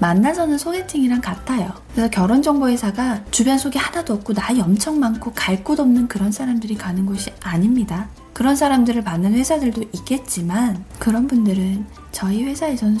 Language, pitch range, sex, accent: Korean, 200-255 Hz, female, native